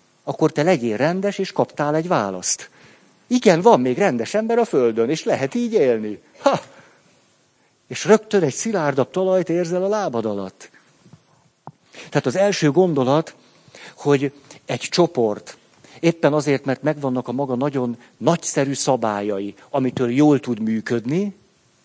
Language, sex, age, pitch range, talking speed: Hungarian, male, 50-69, 120-165 Hz, 135 wpm